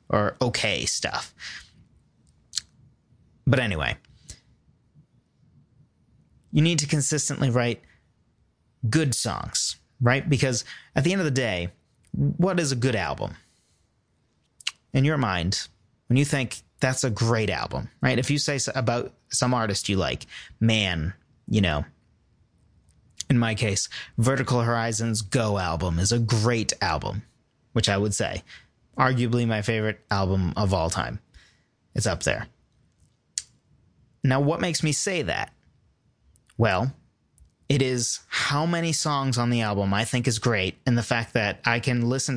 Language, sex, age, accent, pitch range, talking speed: English, male, 30-49, American, 105-130 Hz, 140 wpm